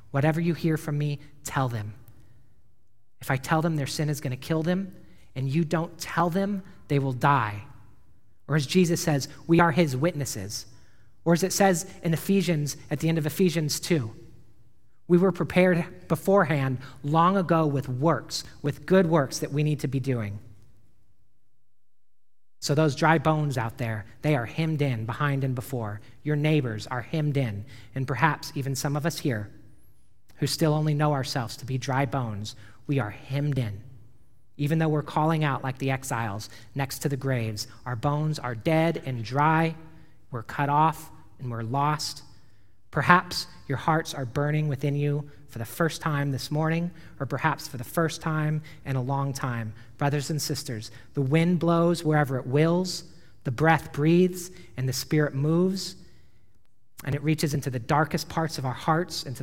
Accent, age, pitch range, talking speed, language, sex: American, 40-59, 120-160 Hz, 175 wpm, English, male